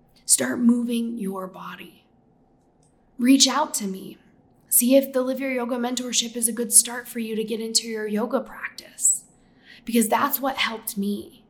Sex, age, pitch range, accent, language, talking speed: female, 10-29, 210-260 Hz, American, English, 165 wpm